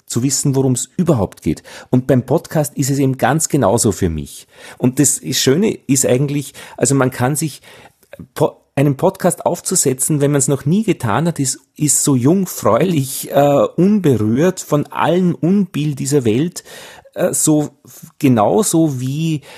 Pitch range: 115-145 Hz